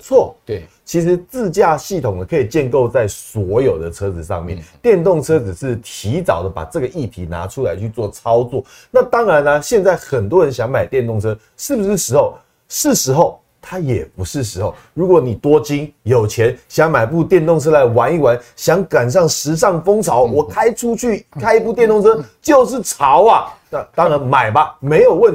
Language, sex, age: Chinese, male, 30-49